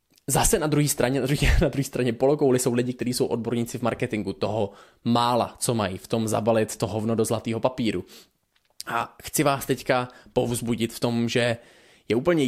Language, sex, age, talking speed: Czech, male, 20-39, 180 wpm